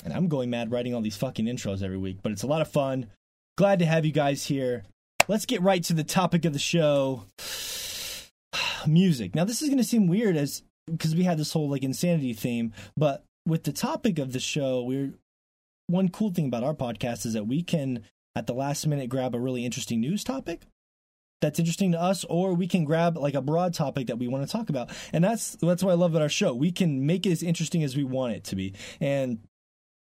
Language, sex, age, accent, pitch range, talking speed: English, male, 20-39, American, 125-175 Hz, 235 wpm